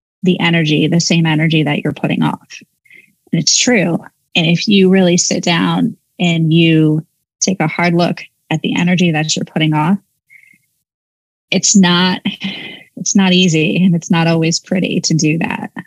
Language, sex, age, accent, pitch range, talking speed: English, female, 20-39, American, 160-185 Hz, 165 wpm